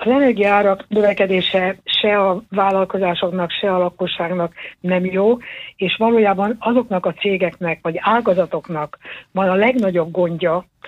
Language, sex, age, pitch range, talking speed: Hungarian, female, 60-79, 170-195 Hz, 120 wpm